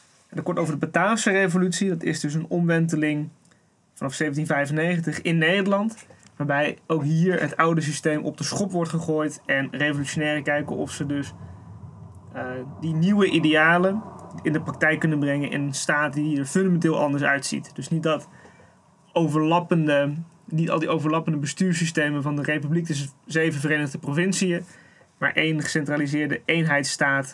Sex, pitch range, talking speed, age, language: male, 145-170 Hz, 150 wpm, 20-39, Dutch